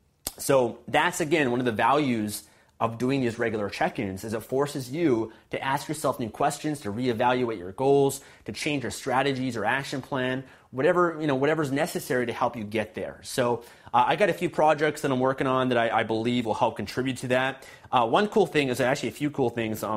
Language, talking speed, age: English, 220 wpm, 30-49